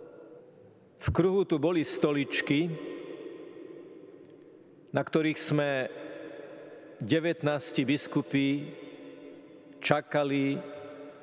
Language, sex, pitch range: Slovak, male, 140-160 Hz